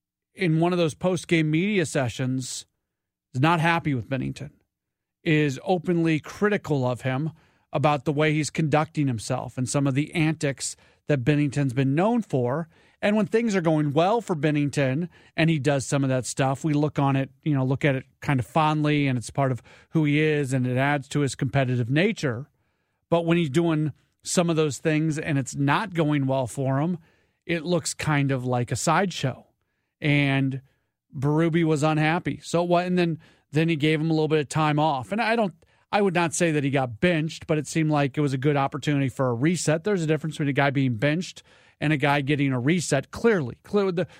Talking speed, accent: 210 wpm, American